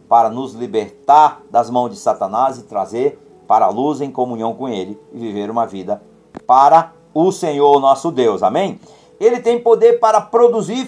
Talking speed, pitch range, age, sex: 170 wpm, 150-245 Hz, 50-69, male